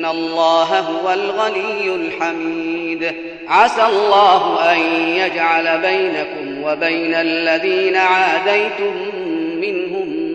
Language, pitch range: Arabic, 165-245 Hz